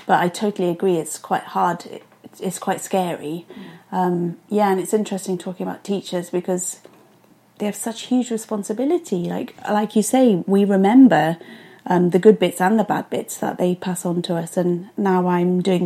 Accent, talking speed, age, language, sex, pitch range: British, 180 wpm, 30-49, English, female, 180-205 Hz